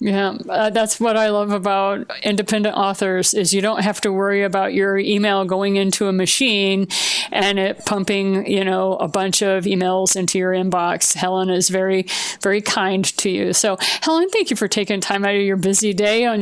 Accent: American